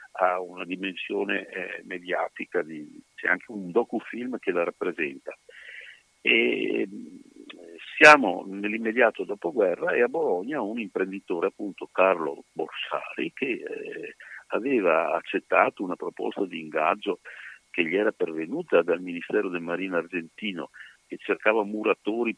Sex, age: male, 50-69